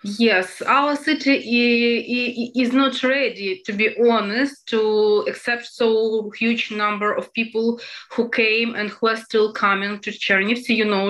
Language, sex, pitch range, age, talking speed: German, female, 210-245 Hz, 20-39, 145 wpm